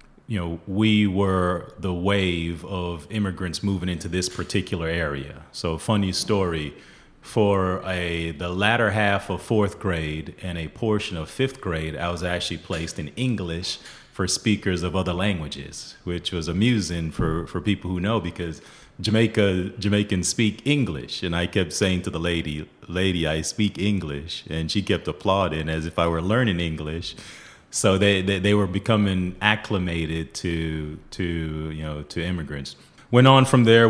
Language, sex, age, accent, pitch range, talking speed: English, male, 30-49, American, 80-100 Hz, 165 wpm